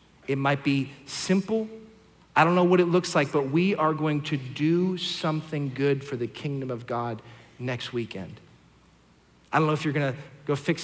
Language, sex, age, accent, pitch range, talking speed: English, male, 40-59, American, 135-175 Hz, 190 wpm